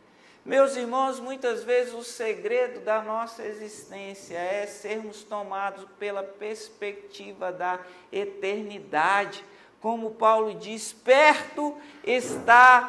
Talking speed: 100 wpm